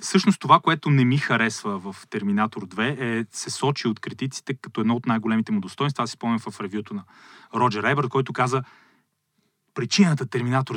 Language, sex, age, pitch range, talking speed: Bulgarian, male, 30-49, 115-145 Hz, 180 wpm